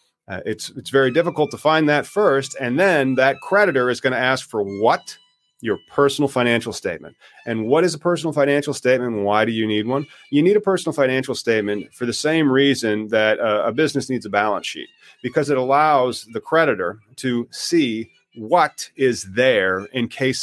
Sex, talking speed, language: male, 195 wpm, English